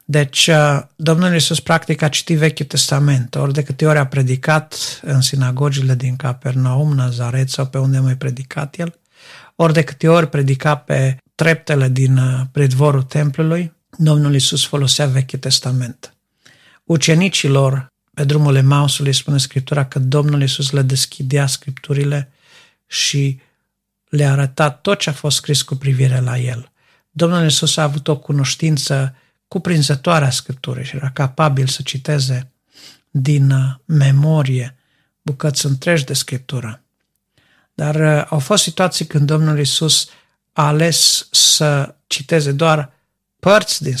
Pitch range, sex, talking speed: 135-155 Hz, male, 130 wpm